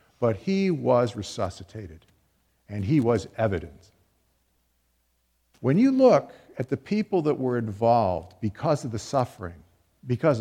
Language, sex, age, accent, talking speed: English, male, 50-69, American, 125 wpm